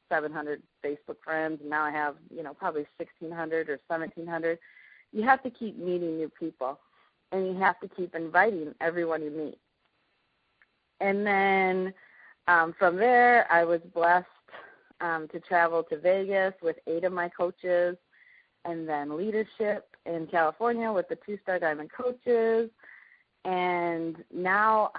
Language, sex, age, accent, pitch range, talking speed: English, female, 30-49, American, 165-195 Hz, 145 wpm